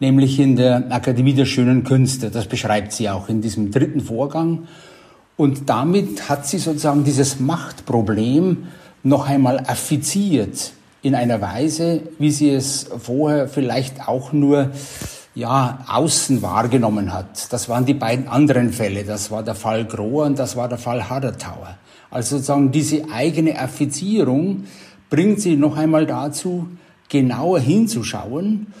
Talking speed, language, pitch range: 140 wpm, German, 125-155 Hz